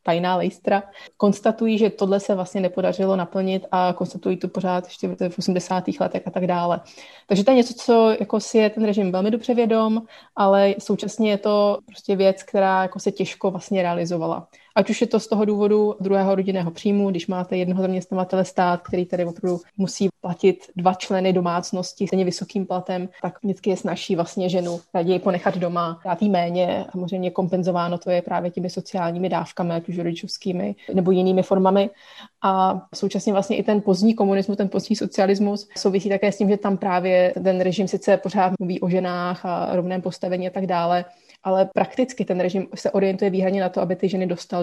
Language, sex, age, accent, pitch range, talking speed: Czech, female, 20-39, native, 180-200 Hz, 190 wpm